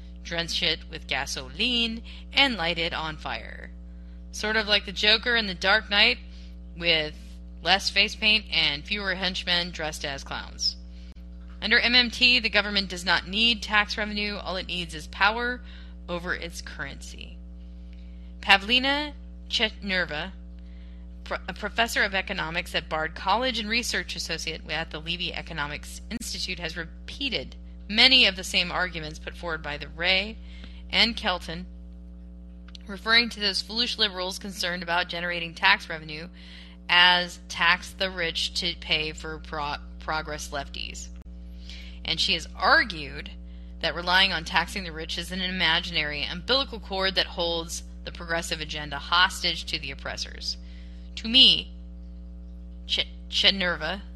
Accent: American